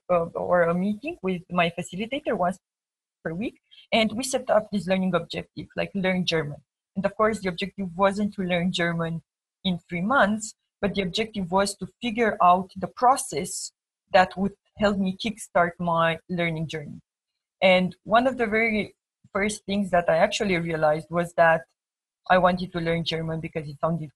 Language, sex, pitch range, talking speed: English, female, 170-195 Hz, 170 wpm